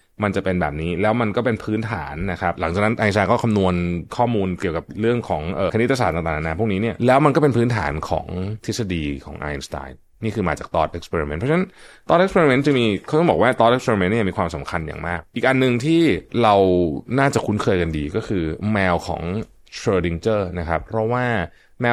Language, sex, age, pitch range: Thai, male, 20-39, 85-120 Hz